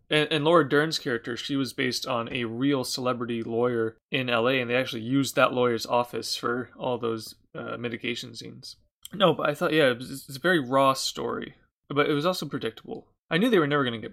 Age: 20-39